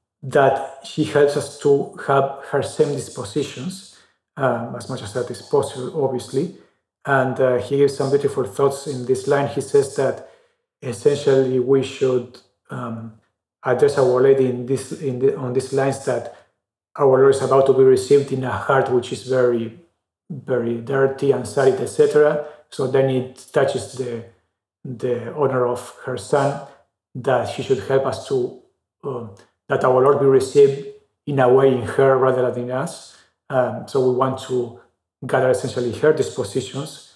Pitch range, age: 125-140 Hz, 40-59